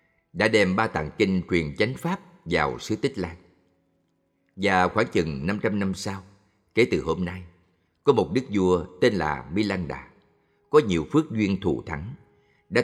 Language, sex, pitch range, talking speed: Vietnamese, male, 85-105 Hz, 175 wpm